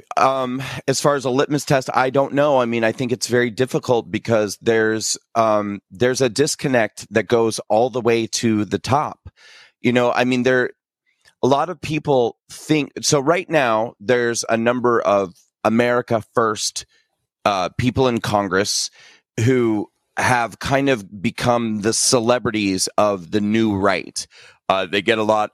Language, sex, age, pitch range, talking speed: English, male, 30-49, 105-130 Hz, 165 wpm